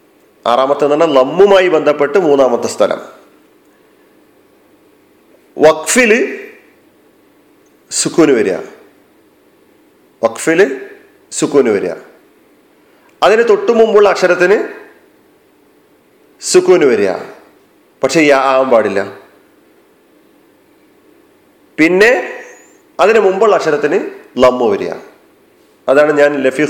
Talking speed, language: 65 wpm, Malayalam